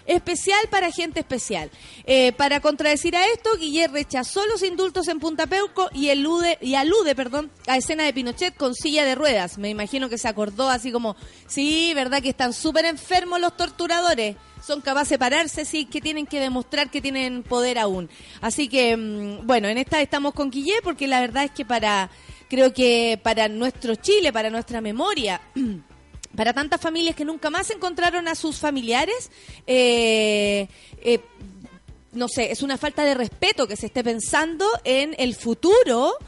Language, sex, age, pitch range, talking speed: Spanish, female, 30-49, 245-335 Hz, 175 wpm